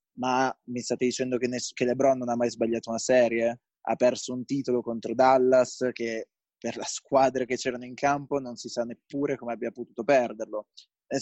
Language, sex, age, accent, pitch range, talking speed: Italian, male, 20-39, native, 120-135 Hz, 200 wpm